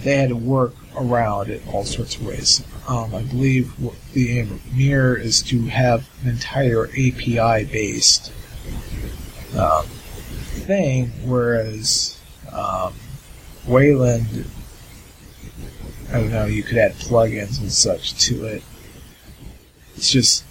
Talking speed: 125 wpm